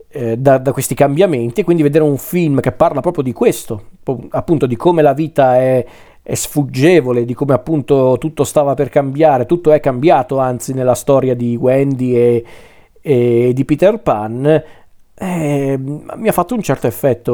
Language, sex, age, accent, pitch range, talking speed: Italian, male, 40-59, native, 125-155 Hz, 170 wpm